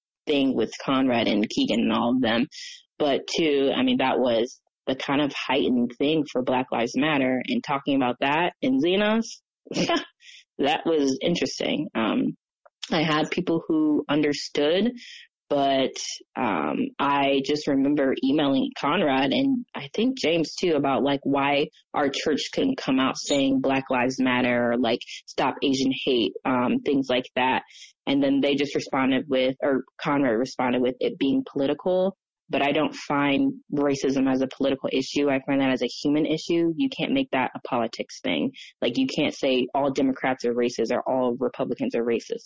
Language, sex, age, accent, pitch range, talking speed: English, female, 20-39, American, 130-175 Hz, 170 wpm